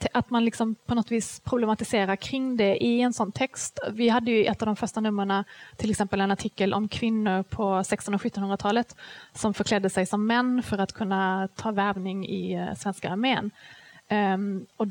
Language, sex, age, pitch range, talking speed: Swedish, female, 30-49, 195-225 Hz, 180 wpm